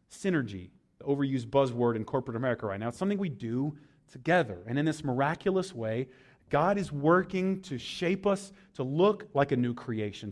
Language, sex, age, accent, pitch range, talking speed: English, male, 30-49, American, 140-200 Hz, 180 wpm